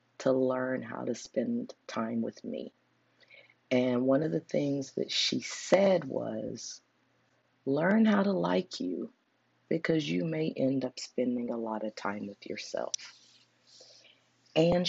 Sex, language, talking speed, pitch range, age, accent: female, English, 140 wpm, 125-145 Hz, 40-59, American